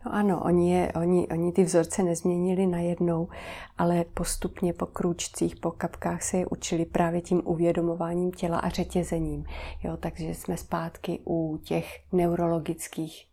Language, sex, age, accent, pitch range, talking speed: Czech, female, 40-59, native, 160-180 Hz, 125 wpm